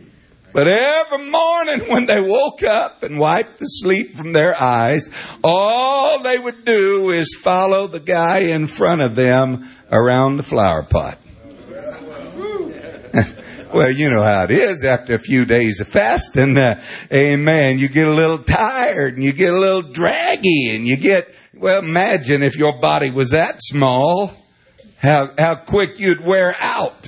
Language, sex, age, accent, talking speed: English, male, 60-79, American, 160 wpm